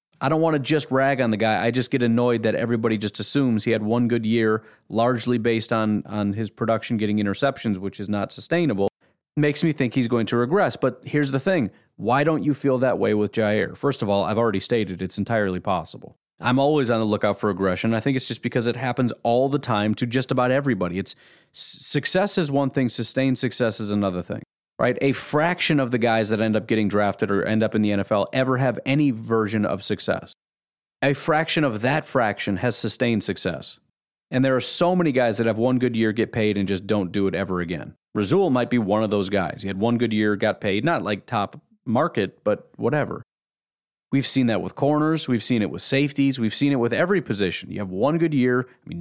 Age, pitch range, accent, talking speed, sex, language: 30-49, 105-135 Hz, American, 230 wpm, male, English